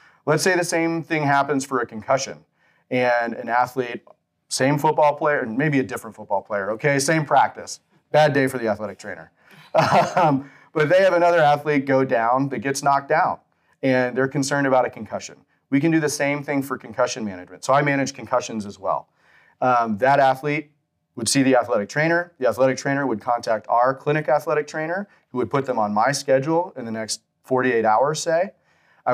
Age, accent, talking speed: 30-49, American, 195 wpm